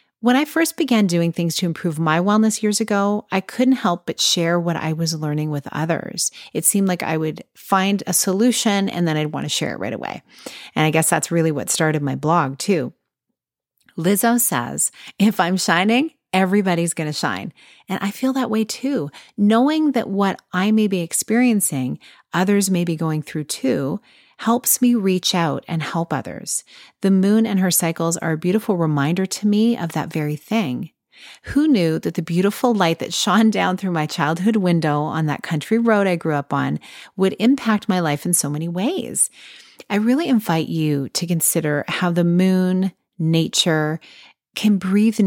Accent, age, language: American, 30-49, English